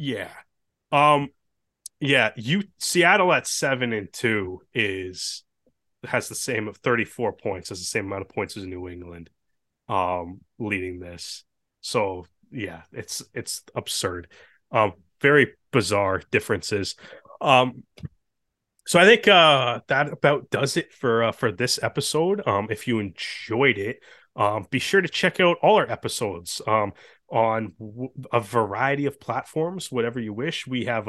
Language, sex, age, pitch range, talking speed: English, male, 30-49, 105-140 Hz, 145 wpm